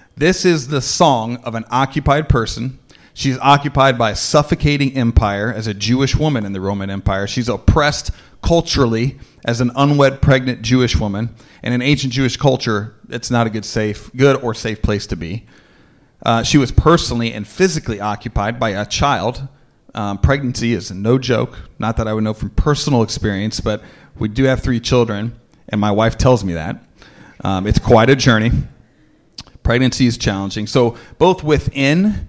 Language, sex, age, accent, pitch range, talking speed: English, male, 40-59, American, 105-130 Hz, 170 wpm